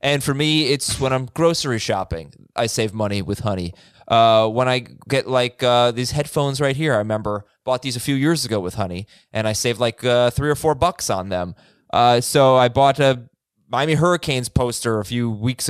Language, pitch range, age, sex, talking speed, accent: English, 115-165 Hz, 20-39, male, 210 wpm, American